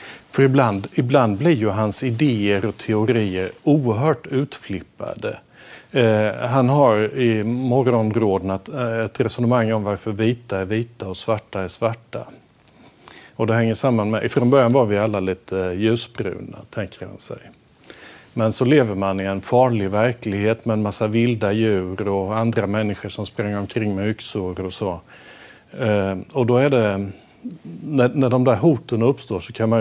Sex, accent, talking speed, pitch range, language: male, Norwegian, 160 wpm, 100-125 Hz, Swedish